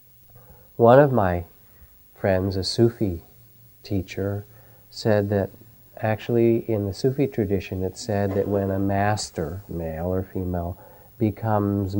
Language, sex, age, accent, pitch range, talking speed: English, male, 50-69, American, 90-115 Hz, 120 wpm